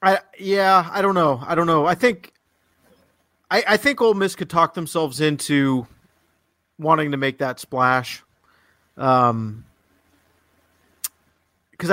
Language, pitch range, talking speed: English, 130-165 Hz, 125 wpm